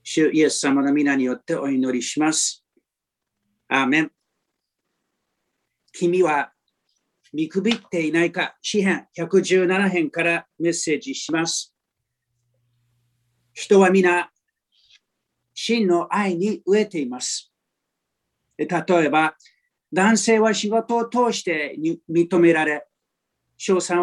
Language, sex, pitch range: Japanese, male, 135-195 Hz